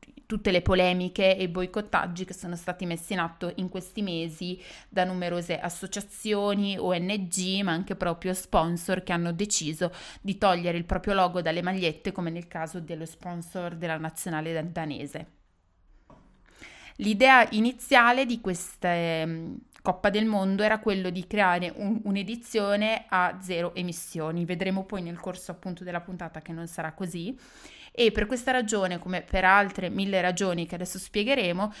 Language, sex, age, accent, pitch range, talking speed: Italian, female, 20-39, native, 170-195 Hz, 150 wpm